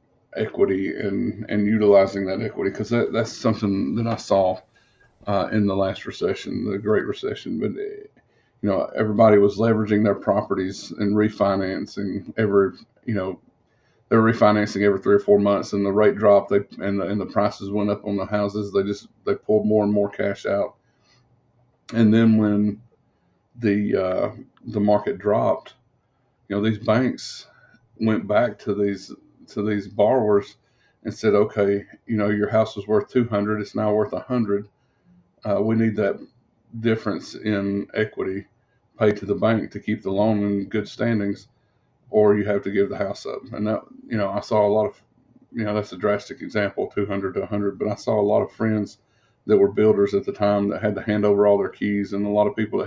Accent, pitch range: American, 100-115 Hz